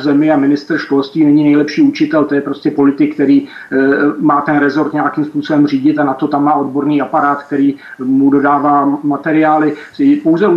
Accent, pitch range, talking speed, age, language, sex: native, 145-165 Hz, 180 wpm, 40-59, Czech, male